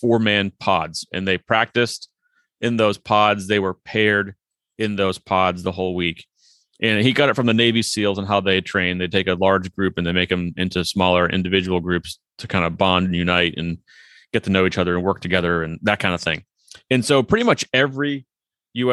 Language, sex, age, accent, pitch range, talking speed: English, male, 30-49, American, 95-125 Hz, 220 wpm